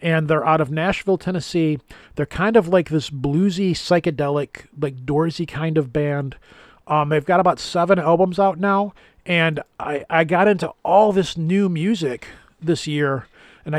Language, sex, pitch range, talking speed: English, male, 145-175 Hz, 165 wpm